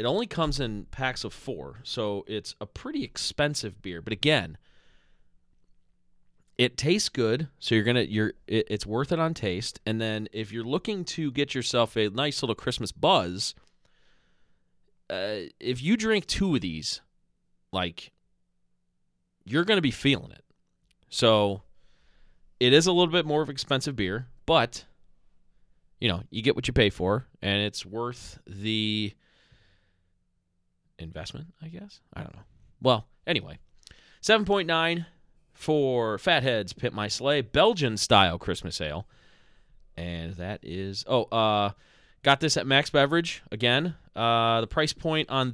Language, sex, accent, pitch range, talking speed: English, male, American, 100-145 Hz, 150 wpm